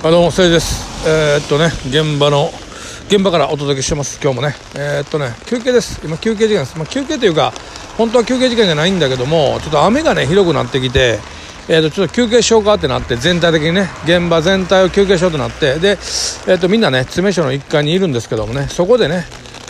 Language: Japanese